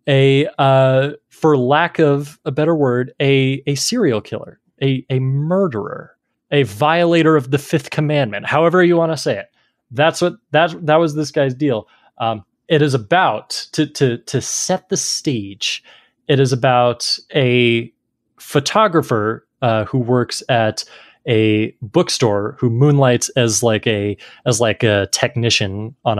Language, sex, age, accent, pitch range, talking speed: English, male, 20-39, American, 120-150 Hz, 150 wpm